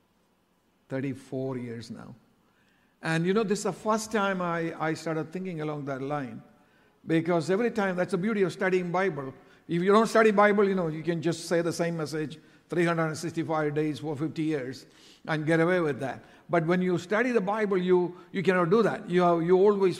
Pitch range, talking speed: 155-205 Hz, 200 wpm